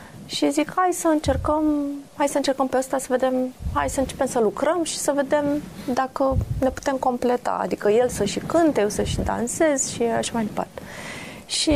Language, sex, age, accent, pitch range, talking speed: Romanian, female, 30-49, native, 200-280 Hz, 185 wpm